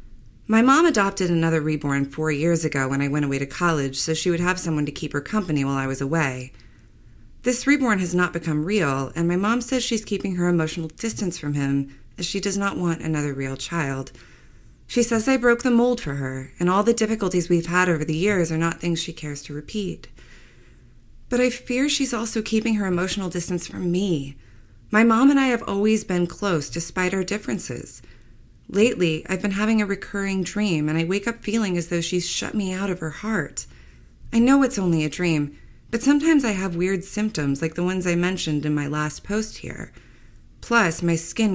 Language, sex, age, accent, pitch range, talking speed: English, female, 30-49, American, 150-210 Hz, 210 wpm